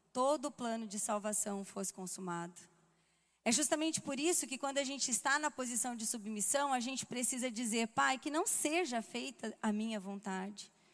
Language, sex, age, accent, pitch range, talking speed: Portuguese, female, 20-39, Brazilian, 190-240 Hz, 175 wpm